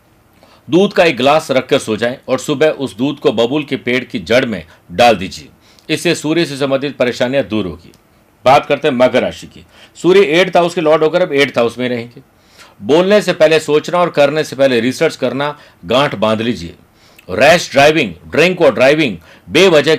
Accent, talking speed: native, 190 wpm